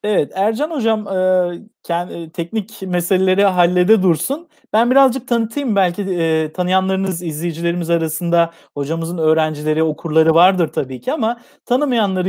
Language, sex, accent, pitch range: Turkish, male, native, 165-220 Hz